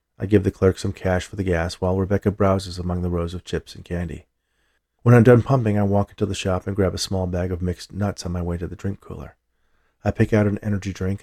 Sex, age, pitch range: male, 40-59, 80-105 Hz